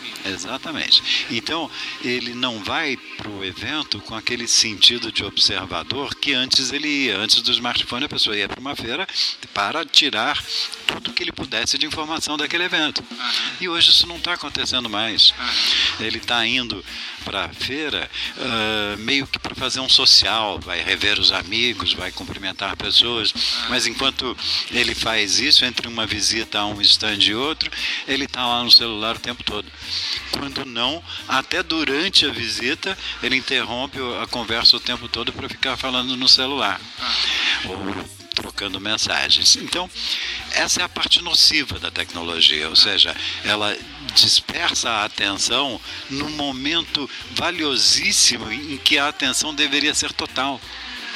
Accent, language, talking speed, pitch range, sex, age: Brazilian, Portuguese, 150 wpm, 105-135 Hz, male, 60-79